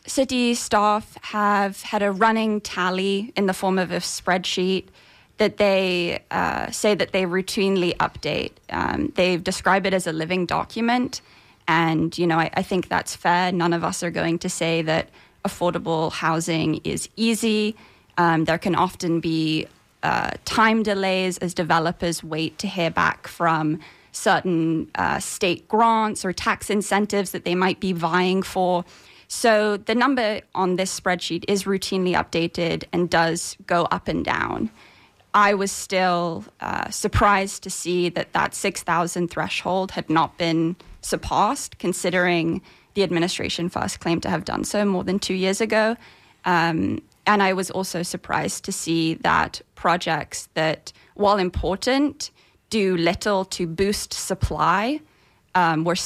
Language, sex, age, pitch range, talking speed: English, female, 20-39, 170-200 Hz, 150 wpm